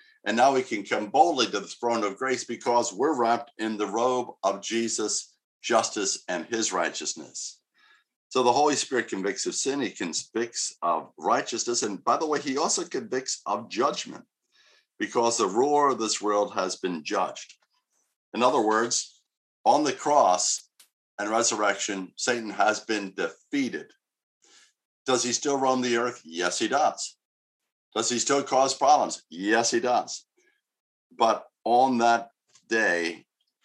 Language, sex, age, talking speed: English, male, 50-69, 150 wpm